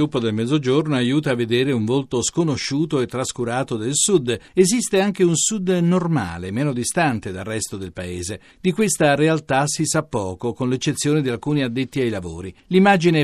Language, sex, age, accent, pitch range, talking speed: Italian, male, 50-69, native, 120-160 Hz, 170 wpm